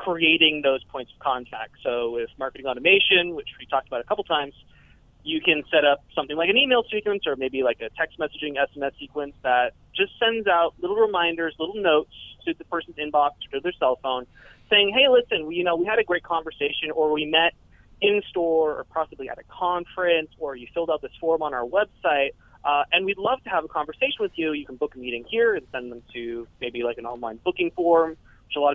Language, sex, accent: English, male, American